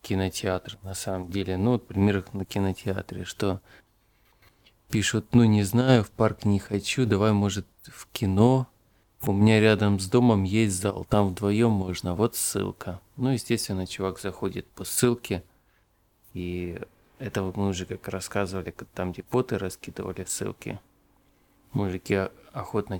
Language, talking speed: Russian, 140 wpm